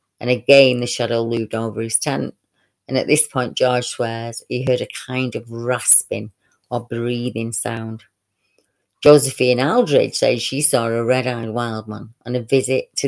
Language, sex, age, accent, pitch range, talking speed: English, female, 30-49, British, 115-130 Hz, 165 wpm